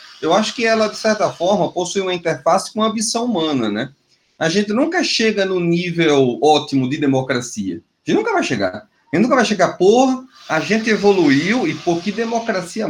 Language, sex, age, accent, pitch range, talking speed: Portuguese, male, 30-49, Brazilian, 150-230 Hz, 195 wpm